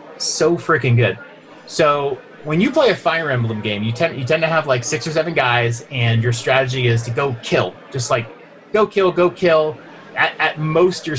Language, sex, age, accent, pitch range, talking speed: English, male, 30-49, American, 115-150 Hz, 205 wpm